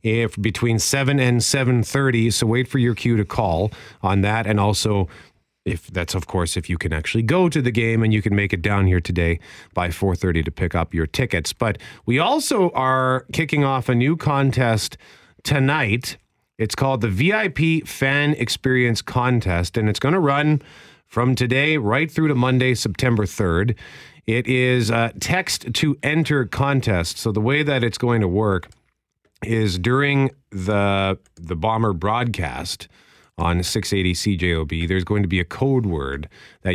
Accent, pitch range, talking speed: American, 95-130 Hz, 170 wpm